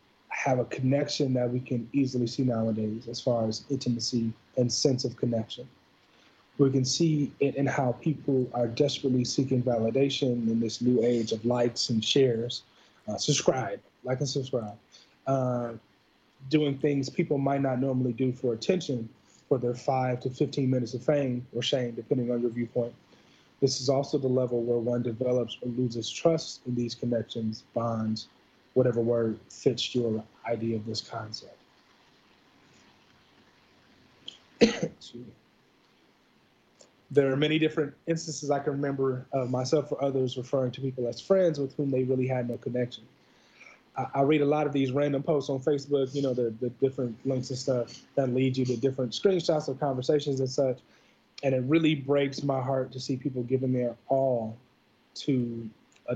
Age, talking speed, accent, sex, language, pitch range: 30-49, 165 wpm, American, male, English, 120-140 Hz